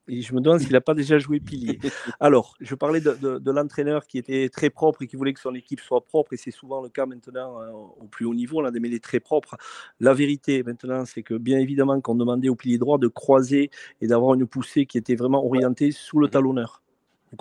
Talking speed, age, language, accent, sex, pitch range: 250 wpm, 40-59, French, French, male, 120-140 Hz